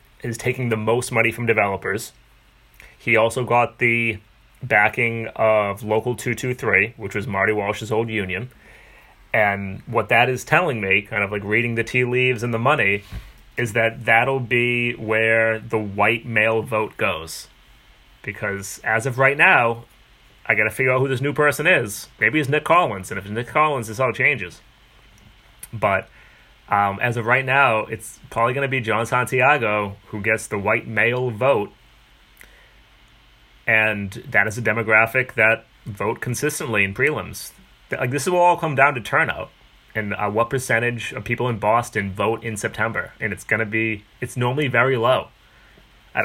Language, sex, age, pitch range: English, male, 30-49, 110-125 Hz